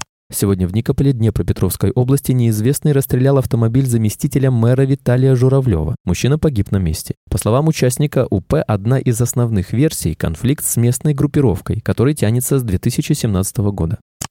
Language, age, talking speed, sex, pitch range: Russian, 20-39, 140 wpm, male, 100-140 Hz